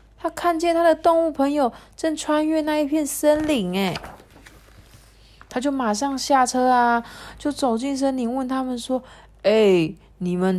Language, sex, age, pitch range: Chinese, female, 20-39, 160-245 Hz